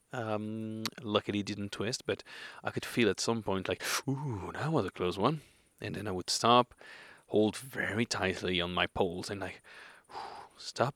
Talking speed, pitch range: 180 wpm, 100-115 Hz